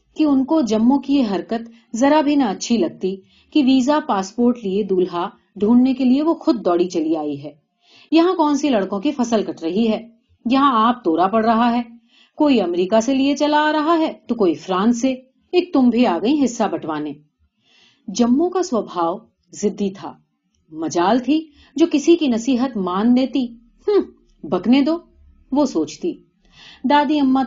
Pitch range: 195-275 Hz